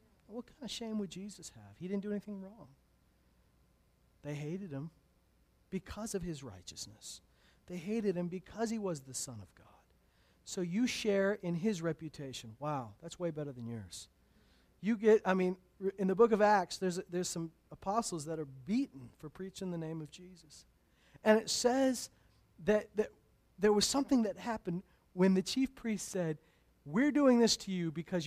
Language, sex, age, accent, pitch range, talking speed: English, male, 40-59, American, 150-235 Hz, 180 wpm